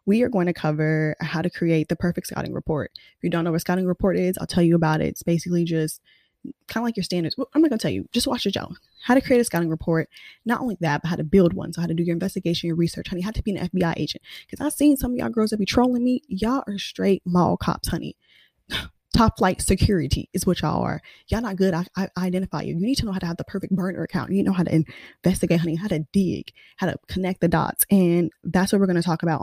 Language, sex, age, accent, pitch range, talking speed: English, female, 20-39, American, 170-200 Hz, 285 wpm